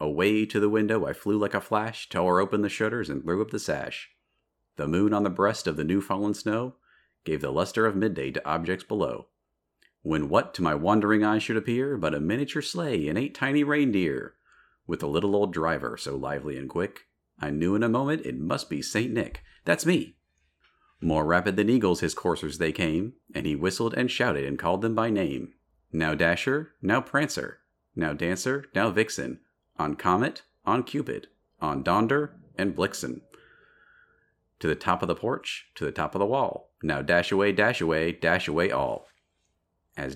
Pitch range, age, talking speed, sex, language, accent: 85-110 Hz, 40-59, 190 wpm, male, English, American